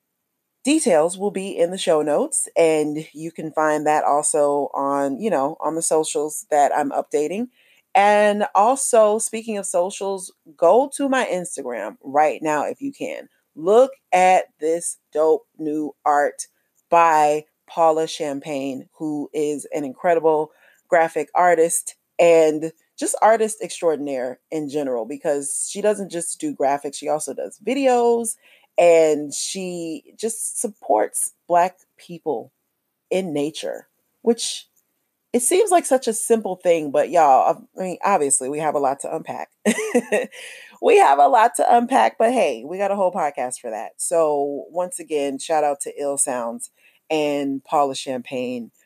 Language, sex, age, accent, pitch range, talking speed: English, female, 30-49, American, 145-205 Hz, 145 wpm